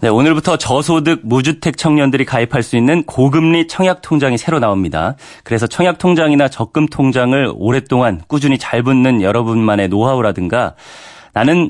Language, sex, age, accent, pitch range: Korean, male, 30-49, native, 120-165 Hz